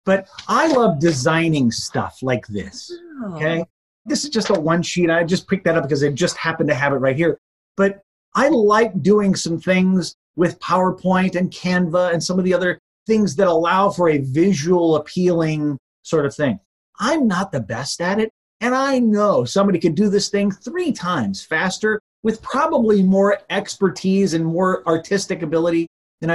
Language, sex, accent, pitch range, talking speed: English, male, American, 160-210 Hz, 180 wpm